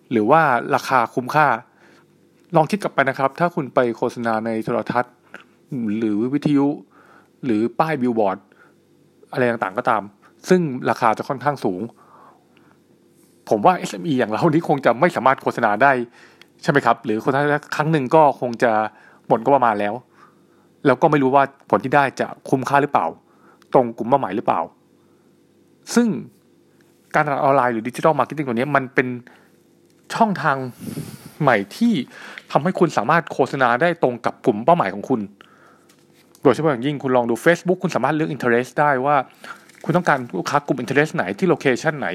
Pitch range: 120-160 Hz